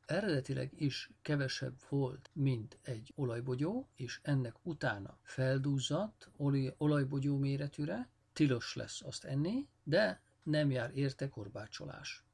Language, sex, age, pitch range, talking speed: Hungarian, male, 50-69, 120-145 Hz, 105 wpm